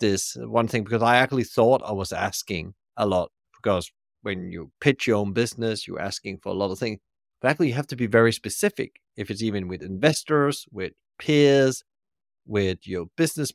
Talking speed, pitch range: 195 wpm, 95-115 Hz